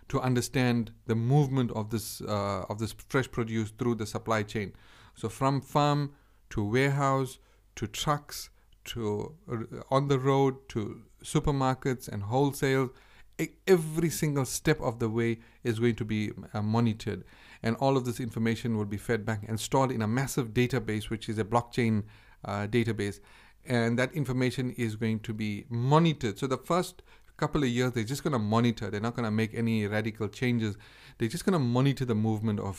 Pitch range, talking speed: 110-135 Hz, 180 wpm